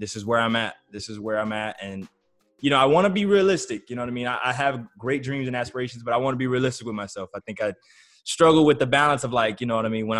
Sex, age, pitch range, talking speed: male, 20-39, 105-130 Hz, 295 wpm